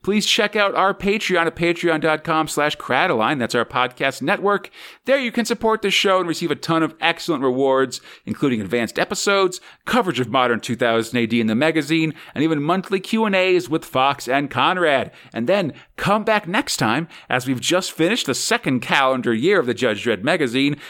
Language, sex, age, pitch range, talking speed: English, male, 40-59, 135-190 Hz, 185 wpm